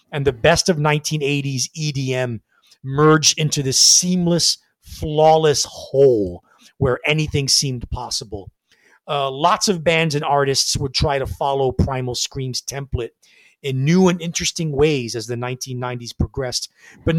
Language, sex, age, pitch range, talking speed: English, male, 30-49, 125-155 Hz, 135 wpm